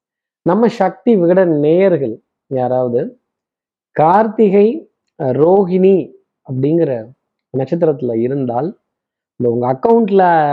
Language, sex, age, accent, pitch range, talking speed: Tamil, male, 20-39, native, 135-170 Hz, 75 wpm